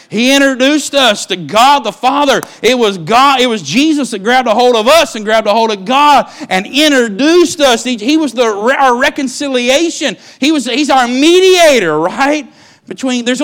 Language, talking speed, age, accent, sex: English, 190 wpm, 50-69, American, male